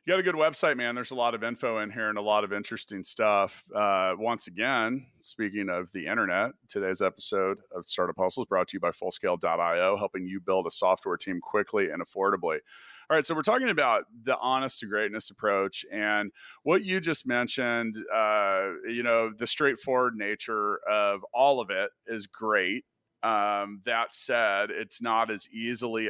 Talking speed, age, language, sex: 185 wpm, 30-49, English, male